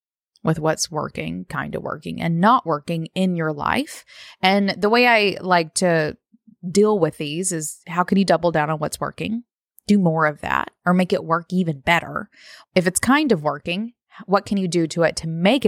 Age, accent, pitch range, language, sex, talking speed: 20-39, American, 165-225 Hz, English, female, 205 wpm